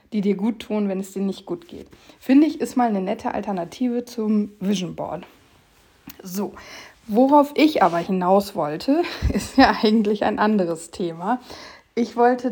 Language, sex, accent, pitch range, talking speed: German, female, German, 205-255 Hz, 165 wpm